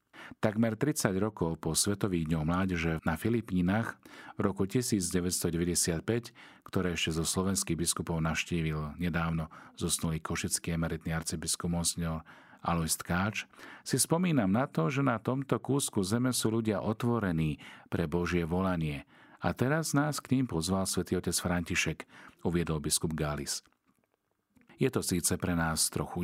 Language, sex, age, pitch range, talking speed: Slovak, male, 40-59, 85-110 Hz, 135 wpm